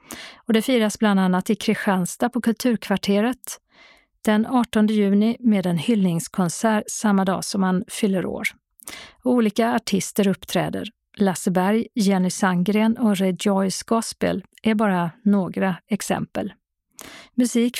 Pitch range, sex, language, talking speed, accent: 190-225 Hz, female, Swedish, 130 wpm, native